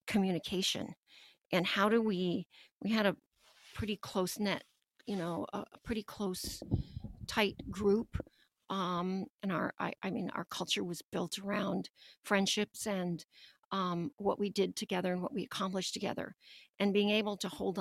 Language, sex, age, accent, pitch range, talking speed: English, female, 50-69, American, 175-200 Hz, 155 wpm